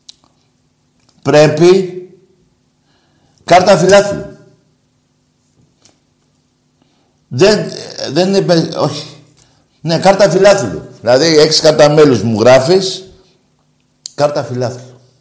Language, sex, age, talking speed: Greek, male, 60-79, 70 wpm